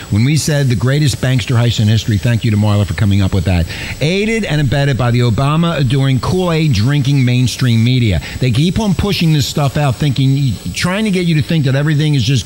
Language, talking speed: English, 225 wpm